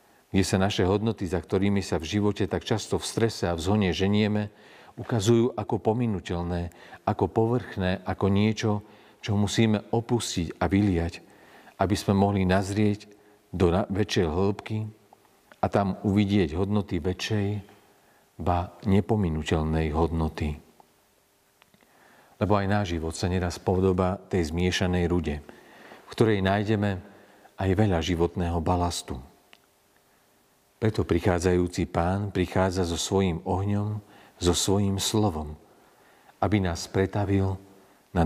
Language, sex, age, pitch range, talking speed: Slovak, male, 40-59, 90-105 Hz, 115 wpm